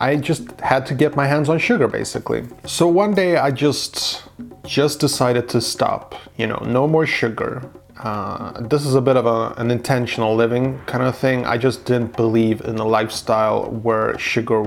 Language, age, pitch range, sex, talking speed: English, 30-49, 115-145 Hz, male, 190 wpm